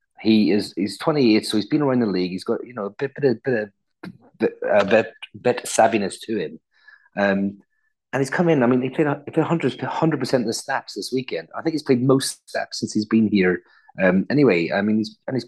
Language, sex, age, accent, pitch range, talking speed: English, male, 30-49, British, 100-130 Hz, 245 wpm